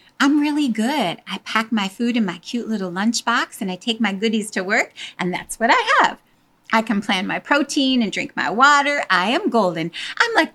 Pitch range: 200-280 Hz